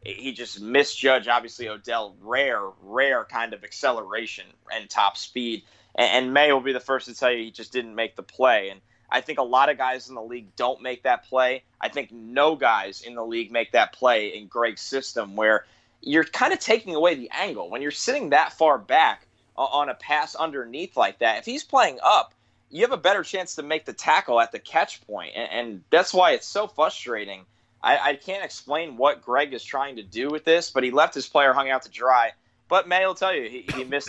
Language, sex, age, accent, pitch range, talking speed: English, male, 20-39, American, 120-145 Hz, 225 wpm